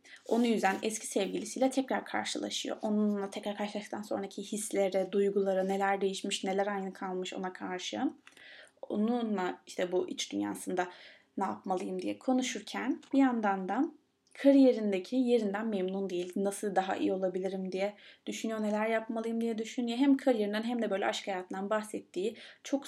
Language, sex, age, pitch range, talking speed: Turkish, female, 20-39, 190-235 Hz, 140 wpm